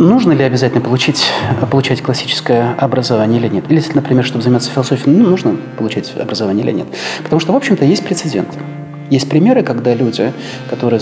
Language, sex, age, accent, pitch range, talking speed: Russian, male, 30-49, native, 115-160 Hz, 170 wpm